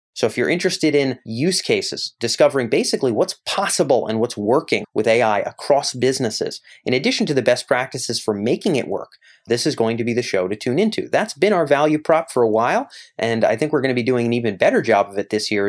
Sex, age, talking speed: male, 30-49, 235 wpm